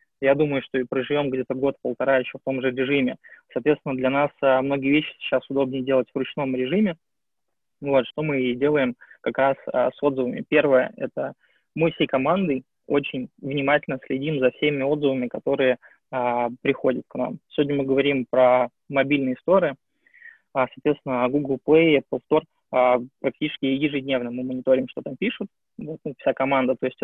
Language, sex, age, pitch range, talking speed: Russian, male, 20-39, 130-150 Hz, 160 wpm